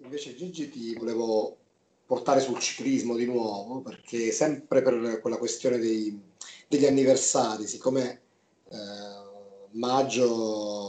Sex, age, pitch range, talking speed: male, 30-49, 110-145 Hz, 110 wpm